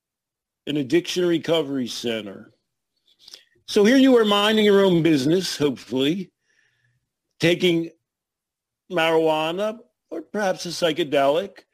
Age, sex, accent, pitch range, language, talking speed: 50-69, male, American, 155-210 Hz, English, 95 wpm